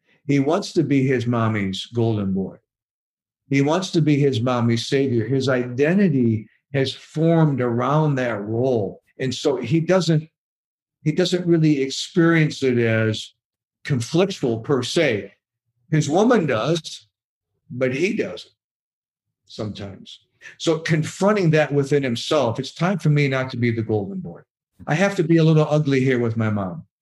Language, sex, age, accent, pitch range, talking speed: English, male, 50-69, American, 120-155 Hz, 150 wpm